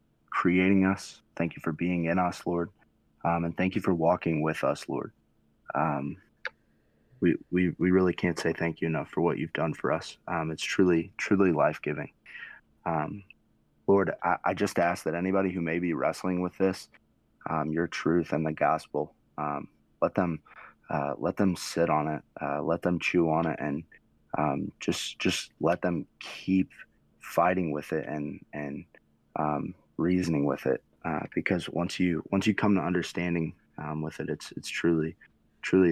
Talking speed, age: 175 wpm, 30-49